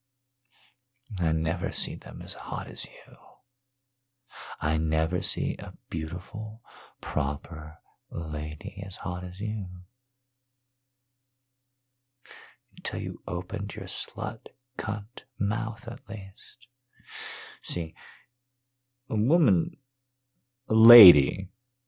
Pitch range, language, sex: 95-130 Hz, English, male